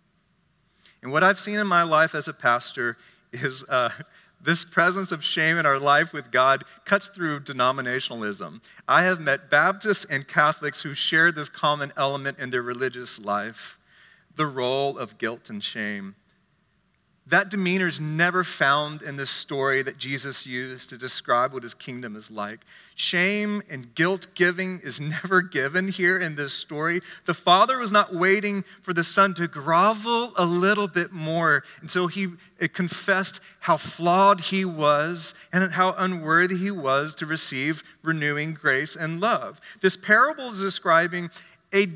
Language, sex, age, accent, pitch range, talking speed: English, male, 40-59, American, 140-185 Hz, 155 wpm